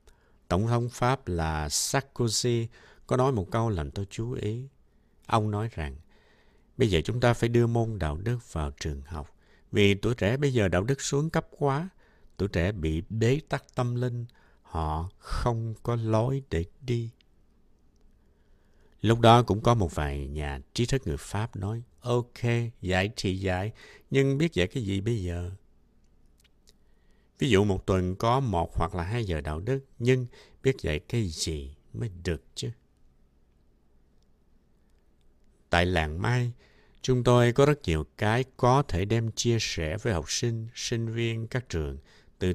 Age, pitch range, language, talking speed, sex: 60-79, 80-120 Hz, Vietnamese, 165 wpm, male